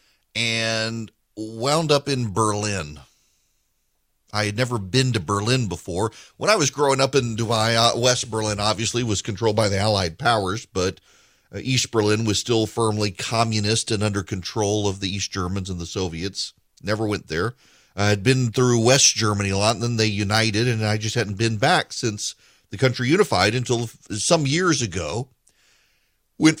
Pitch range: 95-120 Hz